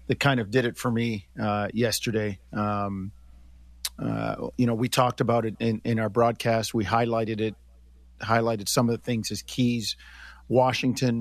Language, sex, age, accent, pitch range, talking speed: English, male, 50-69, American, 105-130 Hz, 170 wpm